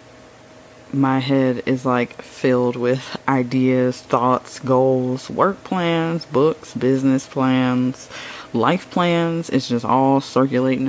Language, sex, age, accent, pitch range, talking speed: English, female, 20-39, American, 125-135 Hz, 110 wpm